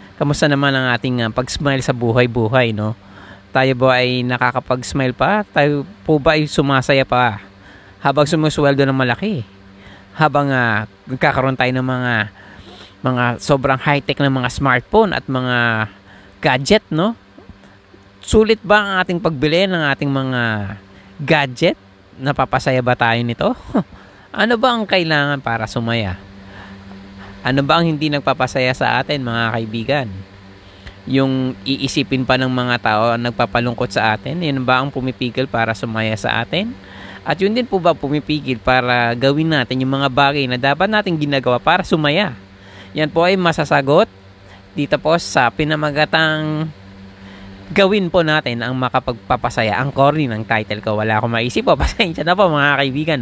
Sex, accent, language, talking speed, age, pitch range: male, native, Filipino, 150 wpm, 20-39, 110-150 Hz